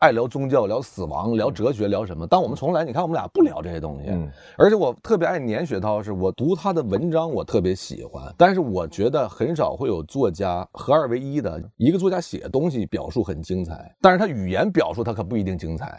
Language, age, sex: Chinese, 30-49, male